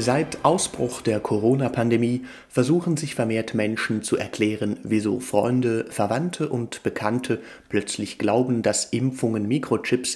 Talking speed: 120 wpm